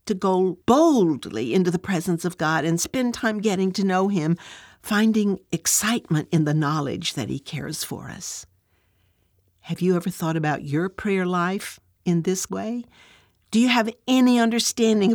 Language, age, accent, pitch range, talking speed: English, 60-79, American, 165-230 Hz, 160 wpm